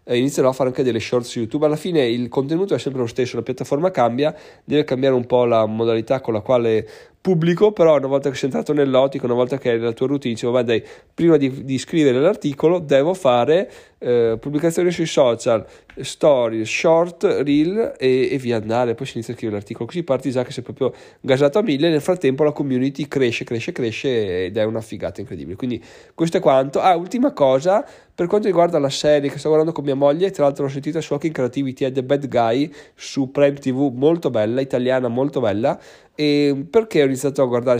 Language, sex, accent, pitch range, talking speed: Italian, male, native, 125-150 Hz, 215 wpm